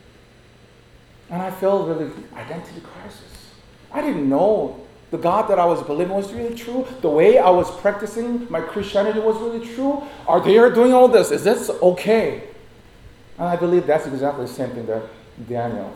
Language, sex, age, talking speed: English, male, 40-59, 175 wpm